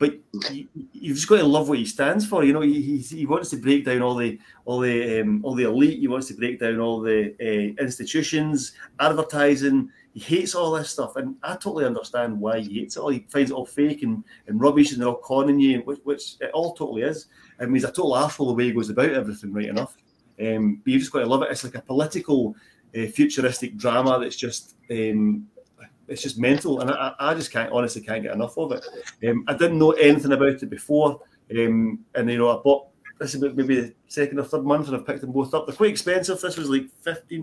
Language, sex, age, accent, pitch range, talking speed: English, male, 30-49, British, 120-155 Hz, 240 wpm